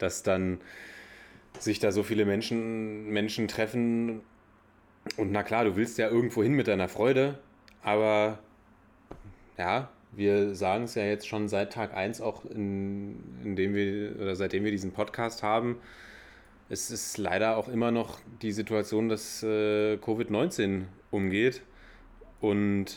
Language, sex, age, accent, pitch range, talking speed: German, male, 30-49, German, 95-110 Hz, 130 wpm